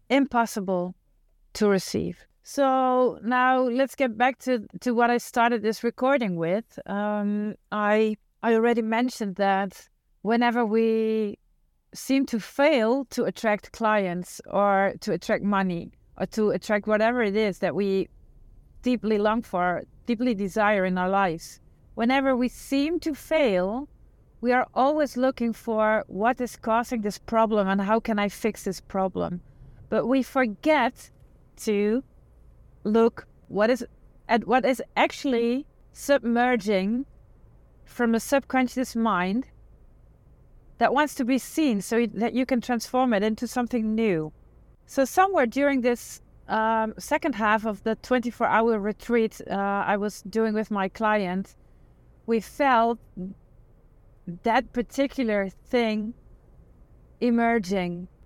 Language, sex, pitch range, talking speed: Dutch, female, 205-250 Hz, 130 wpm